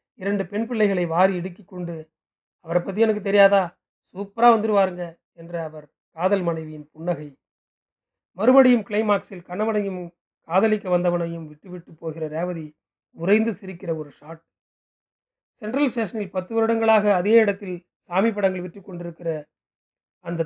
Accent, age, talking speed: native, 30-49, 115 wpm